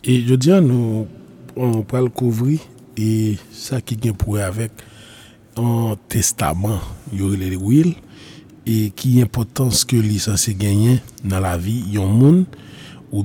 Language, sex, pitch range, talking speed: French, male, 110-130 Hz, 160 wpm